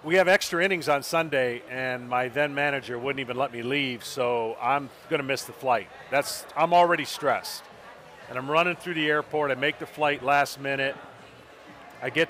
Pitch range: 140-170 Hz